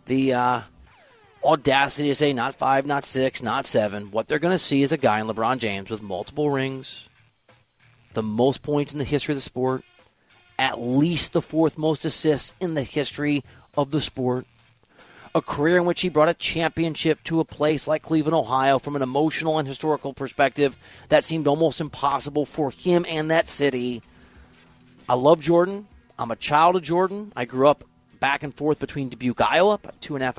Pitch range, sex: 125-155 Hz, male